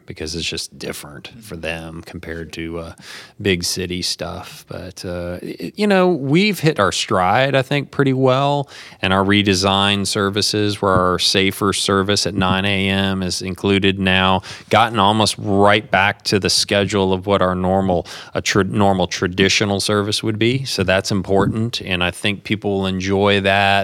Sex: male